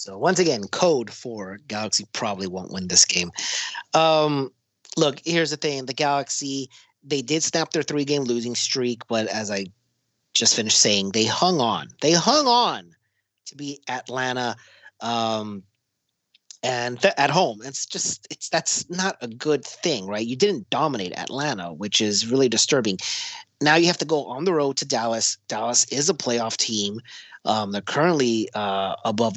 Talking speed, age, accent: 170 wpm, 30-49, American